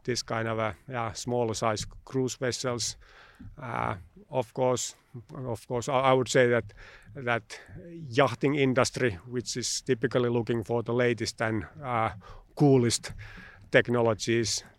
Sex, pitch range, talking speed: male, 115-130 Hz, 130 wpm